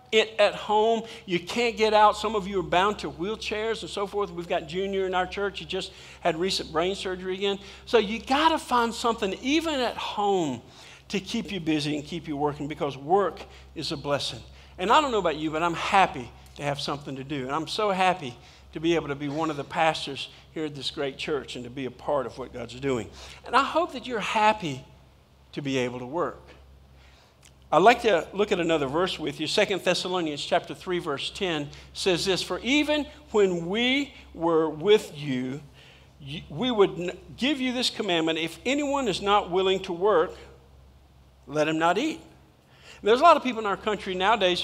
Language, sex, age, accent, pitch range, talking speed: English, male, 50-69, American, 150-210 Hz, 210 wpm